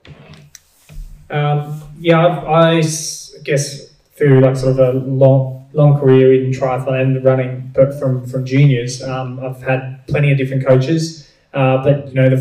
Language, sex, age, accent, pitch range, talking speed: English, male, 20-39, Australian, 130-140 Hz, 160 wpm